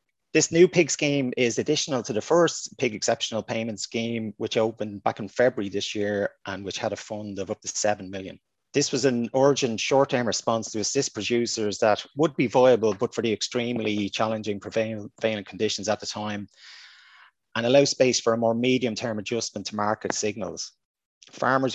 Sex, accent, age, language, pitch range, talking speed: male, Irish, 30-49, English, 105-125 Hz, 180 wpm